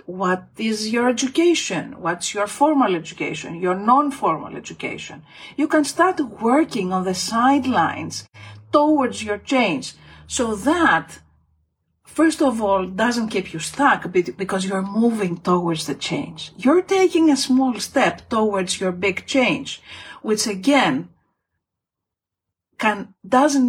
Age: 50-69